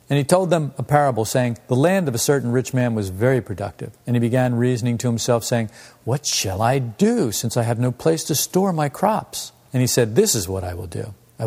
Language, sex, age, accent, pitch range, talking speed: English, male, 50-69, American, 110-135 Hz, 245 wpm